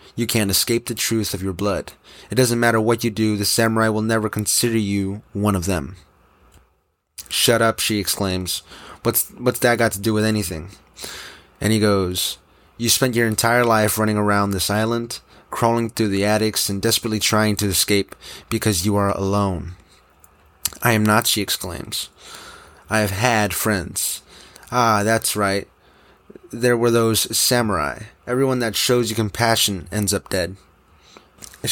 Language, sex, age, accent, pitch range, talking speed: English, male, 20-39, American, 100-115 Hz, 160 wpm